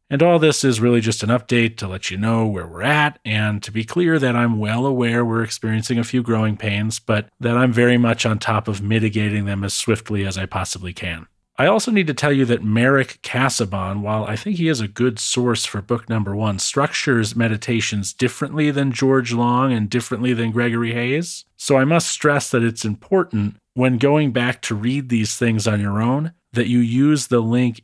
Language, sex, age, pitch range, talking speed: English, male, 40-59, 105-125 Hz, 215 wpm